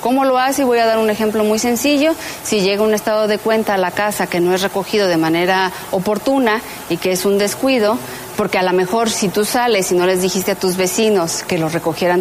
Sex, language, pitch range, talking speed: female, Spanish, 185-220 Hz, 240 wpm